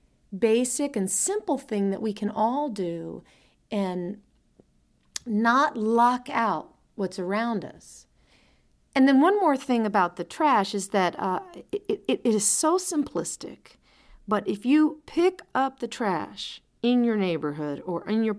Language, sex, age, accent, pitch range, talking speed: English, female, 40-59, American, 195-270 Hz, 150 wpm